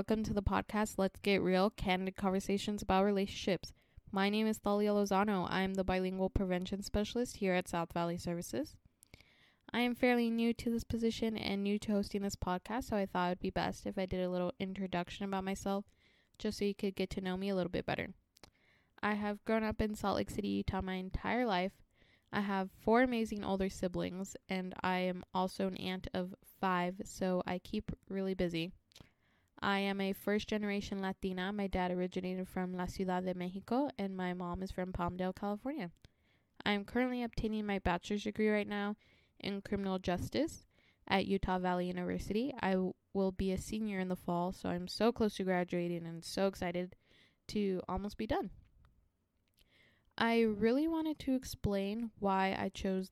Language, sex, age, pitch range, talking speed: English, female, 10-29, 185-210 Hz, 185 wpm